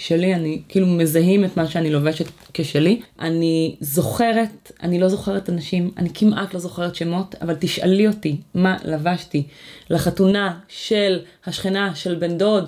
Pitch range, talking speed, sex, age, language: 150-195 Hz, 145 wpm, female, 30-49, Hebrew